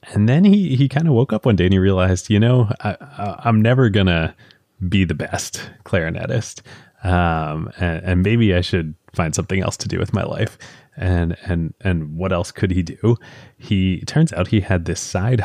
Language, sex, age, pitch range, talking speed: English, male, 30-49, 90-115 Hz, 205 wpm